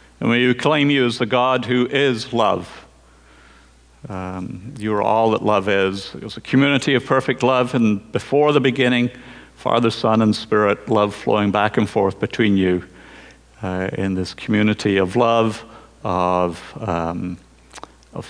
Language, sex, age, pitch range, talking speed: English, male, 50-69, 95-120 Hz, 155 wpm